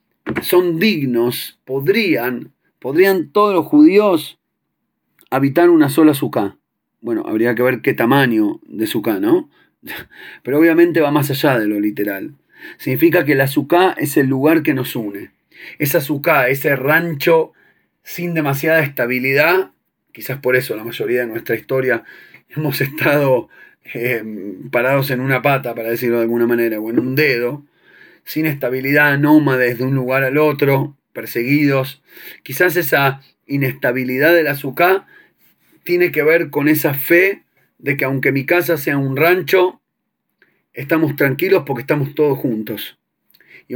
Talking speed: 145 wpm